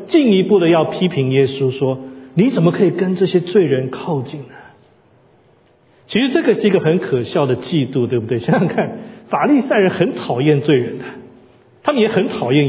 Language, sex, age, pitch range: Chinese, male, 40-59, 160-235 Hz